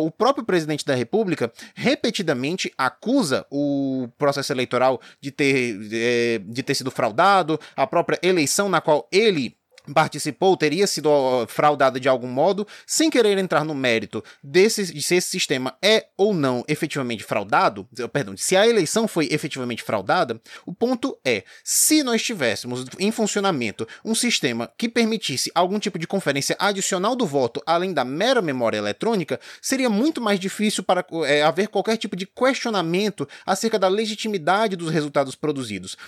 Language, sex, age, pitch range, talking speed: Portuguese, male, 20-39, 145-220 Hz, 150 wpm